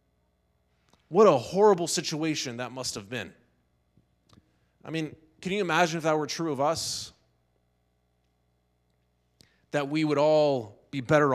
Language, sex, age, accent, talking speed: English, male, 20-39, American, 130 wpm